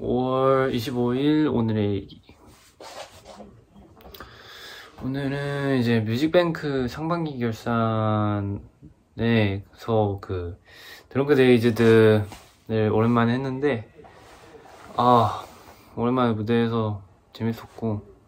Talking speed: 55 wpm